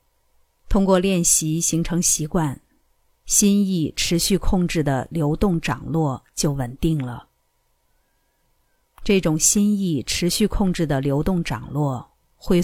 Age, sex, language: 50-69, female, Chinese